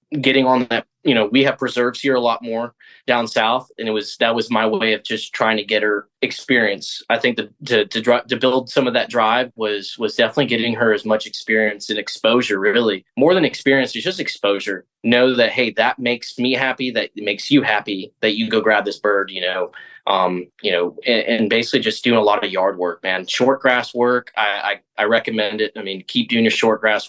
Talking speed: 235 wpm